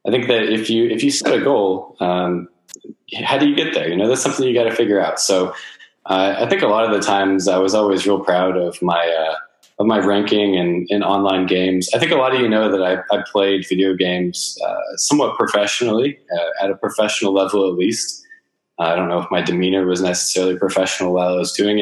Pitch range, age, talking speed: 90-115 Hz, 20-39, 235 wpm